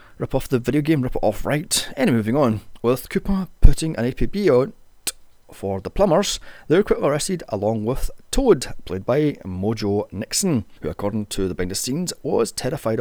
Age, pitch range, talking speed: 30-49, 105-150 Hz, 190 wpm